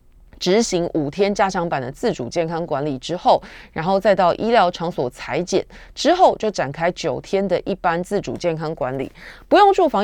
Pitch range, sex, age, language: 155-220 Hz, female, 20-39, Chinese